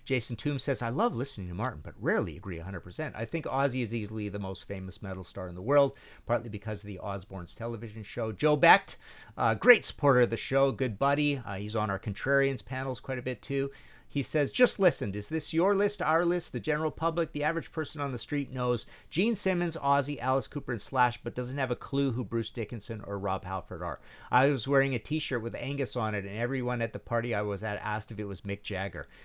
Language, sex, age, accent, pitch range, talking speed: English, male, 50-69, American, 100-135 Hz, 235 wpm